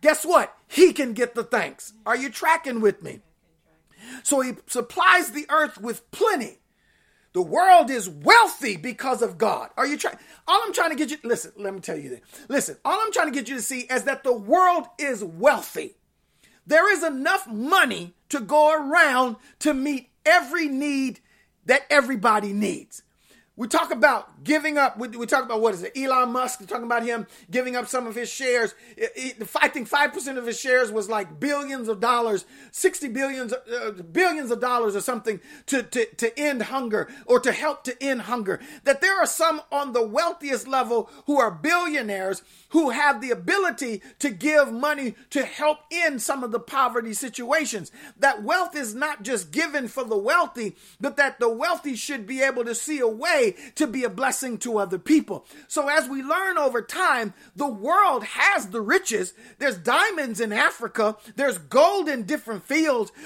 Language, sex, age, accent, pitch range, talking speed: English, male, 40-59, American, 235-310 Hz, 185 wpm